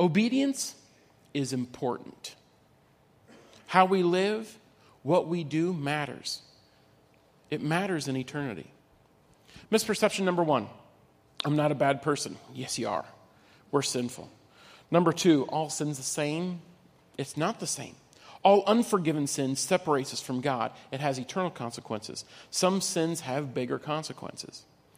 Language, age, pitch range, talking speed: English, 40-59, 135-175 Hz, 125 wpm